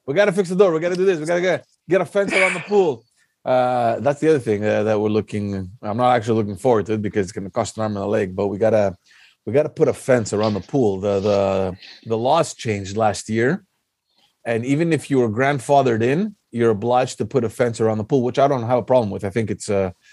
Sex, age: male, 30-49